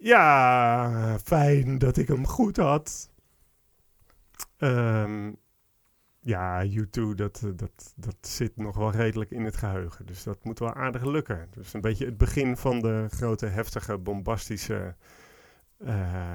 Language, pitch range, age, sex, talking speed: Dutch, 100-150 Hz, 40-59, male, 140 wpm